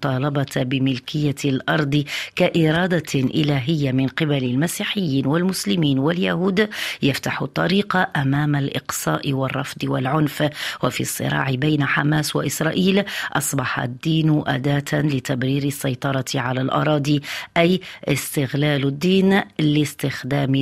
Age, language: 40-59, Arabic